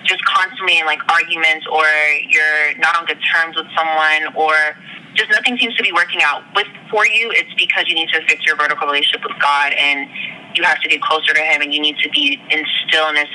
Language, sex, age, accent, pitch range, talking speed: English, female, 20-39, American, 150-175 Hz, 225 wpm